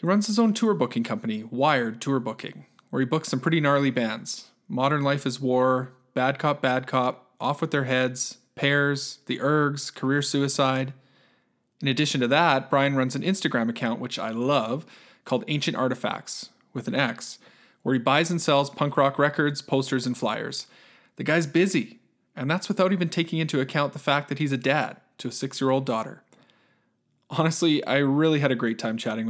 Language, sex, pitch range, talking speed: English, male, 130-160 Hz, 185 wpm